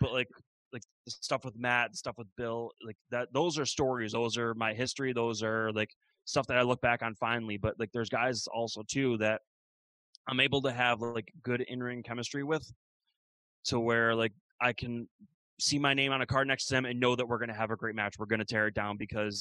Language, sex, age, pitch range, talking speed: English, male, 20-39, 110-125 Hz, 240 wpm